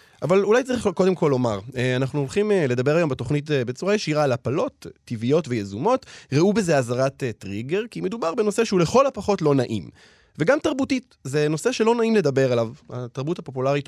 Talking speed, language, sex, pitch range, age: 170 wpm, Hebrew, male, 125-190 Hz, 20-39